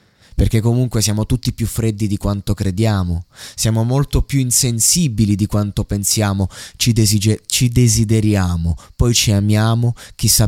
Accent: native